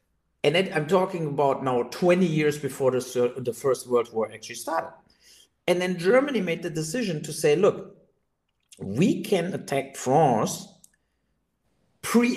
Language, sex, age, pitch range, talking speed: English, male, 50-69, 130-195 Hz, 140 wpm